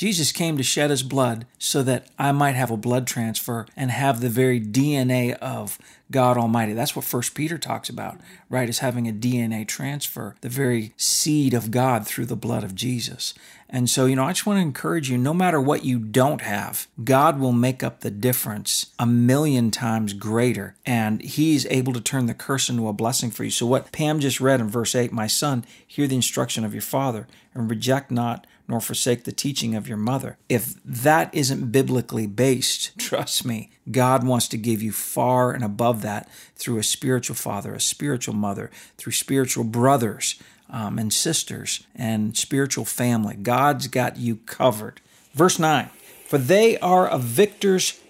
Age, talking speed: 40-59, 190 wpm